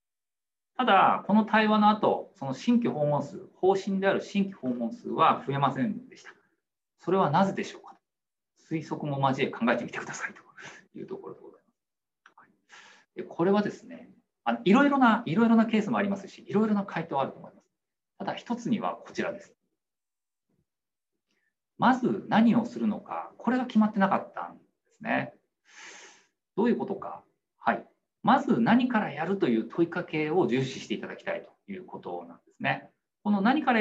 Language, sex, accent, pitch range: Japanese, male, native, 145-220 Hz